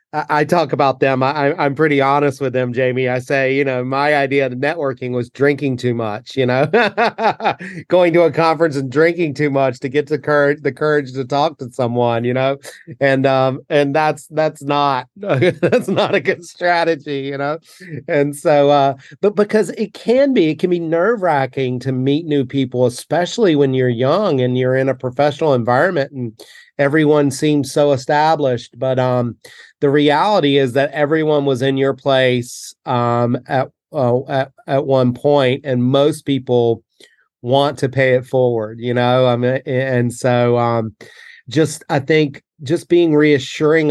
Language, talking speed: English, 180 wpm